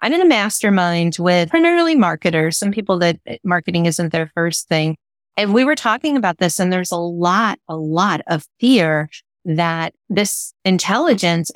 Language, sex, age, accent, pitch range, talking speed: English, female, 30-49, American, 165-215 Hz, 165 wpm